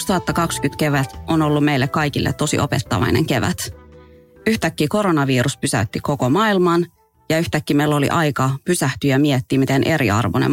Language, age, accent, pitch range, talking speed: English, 30-49, Finnish, 130-160 Hz, 135 wpm